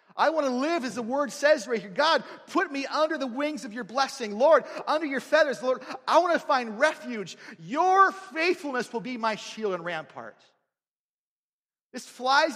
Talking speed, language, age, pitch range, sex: 185 wpm, English, 40-59, 185-275 Hz, male